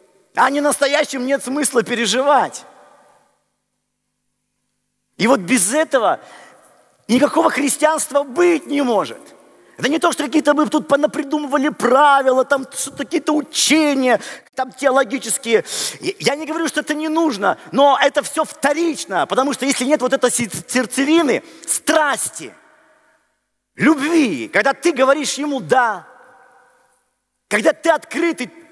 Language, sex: Russian, male